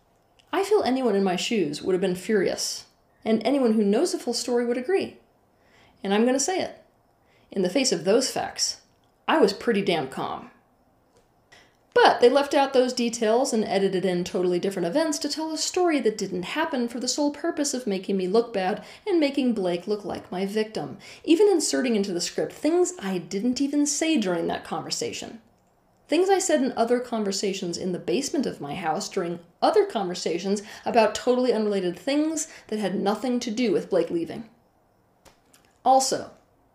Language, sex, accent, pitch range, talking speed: English, female, American, 195-265 Hz, 180 wpm